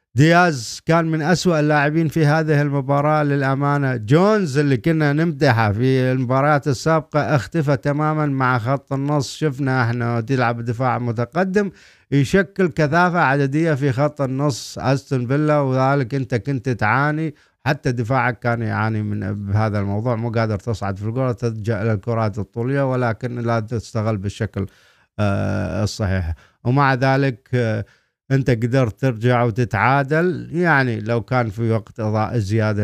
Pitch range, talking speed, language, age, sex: 110-145 Hz, 130 wpm, Arabic, 50-69, male